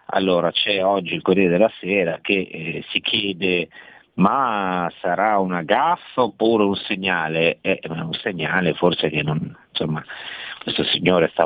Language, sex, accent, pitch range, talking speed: Italian, male, native, 85-95 Hz, 145 wpm